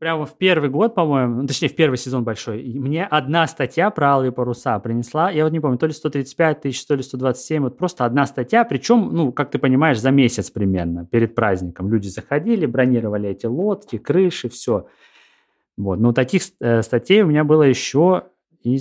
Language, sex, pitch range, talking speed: Russian, male, 120-160 Hz, 185 wpm